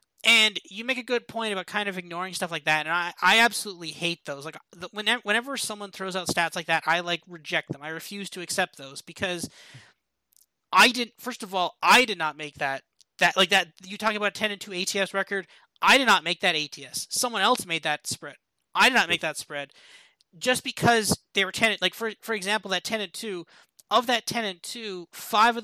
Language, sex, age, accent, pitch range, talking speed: English, male, 30-49, American, 165-205 Hz, 225 wpm